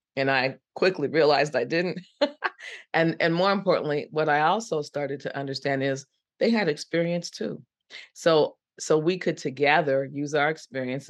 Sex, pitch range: female, 135-180 Hz